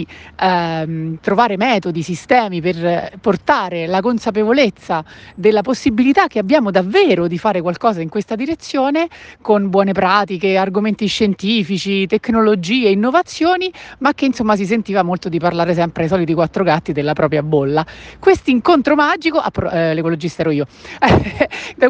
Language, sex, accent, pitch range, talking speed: Italian, female, native, 190-265 Hz, 135 wpm